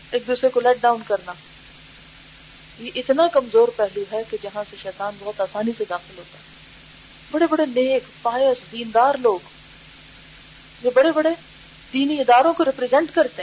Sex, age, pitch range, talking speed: female, 40-59, 215-285 Hz, 155 wpm